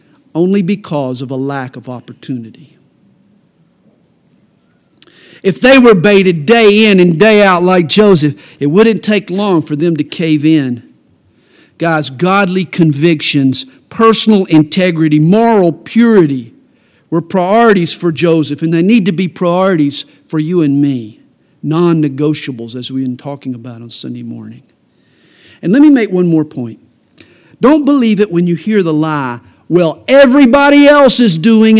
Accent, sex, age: American, male, 50-69